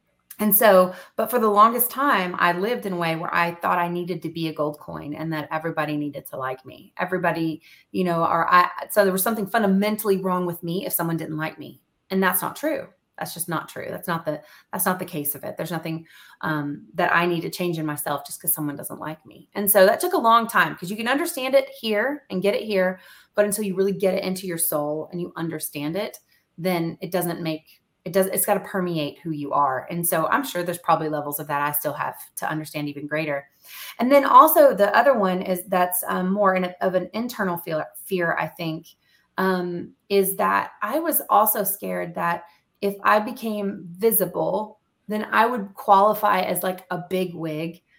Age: 30-49